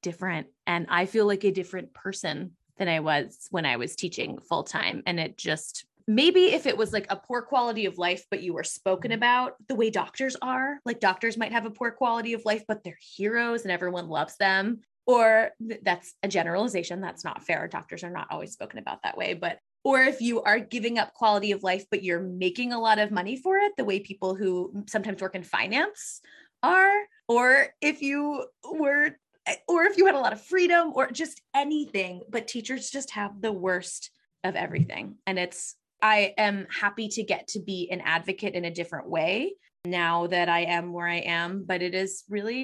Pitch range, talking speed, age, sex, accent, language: 175-230 Hz, 205 wpm, 20-39, female, American, English